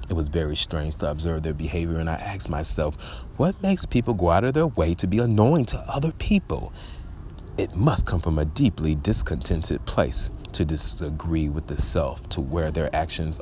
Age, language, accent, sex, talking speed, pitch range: 30-49, English, American, male, 190 wpm, 80-105 Hz